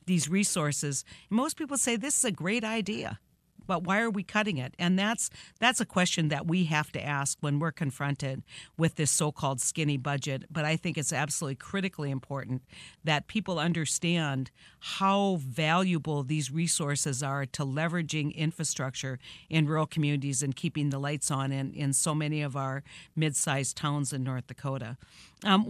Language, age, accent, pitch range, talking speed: English, 50-69, American, 145-170 Hz, 170 wpm